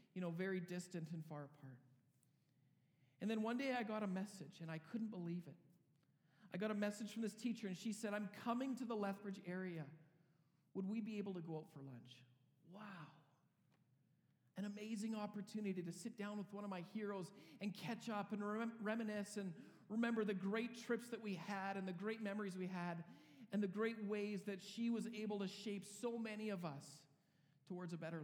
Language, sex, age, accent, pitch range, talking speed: English, male, 40-59, American, 170-215 Hz, 200 wpm